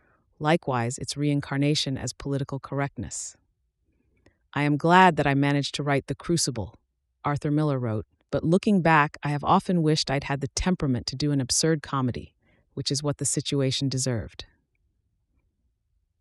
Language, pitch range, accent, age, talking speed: English, 135-155 Hz, American, 30-49, 150 wpm